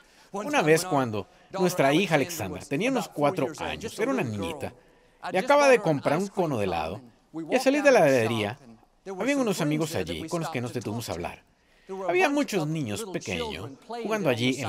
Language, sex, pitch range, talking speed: Spanish, male, 130-200 Hz, 185 wpm